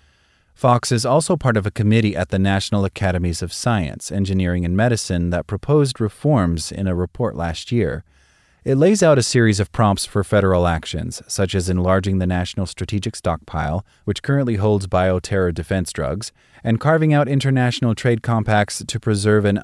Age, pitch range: 30-49, 90-115 Hz